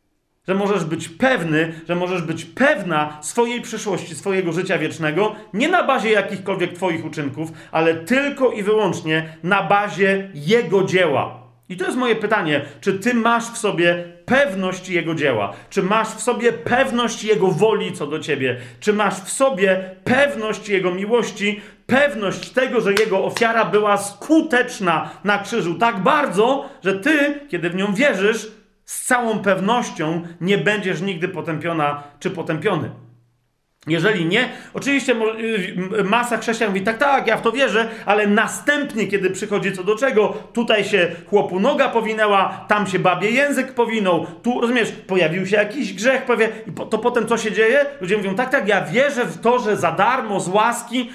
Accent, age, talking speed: native, 40-59, 165 wpm